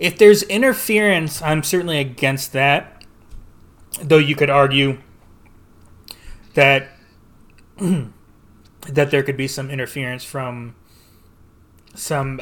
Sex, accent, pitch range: male, American, 110-145 Hz